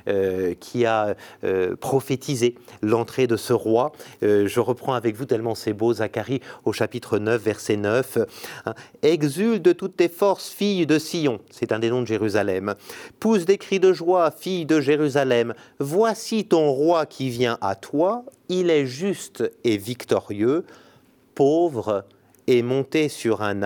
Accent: French